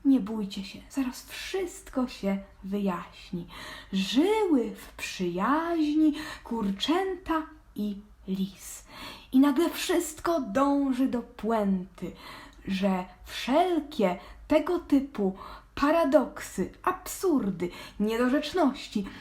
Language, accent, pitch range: Polish, native, 210-325 Hz